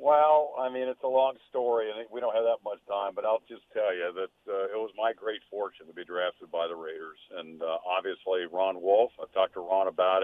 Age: 50-69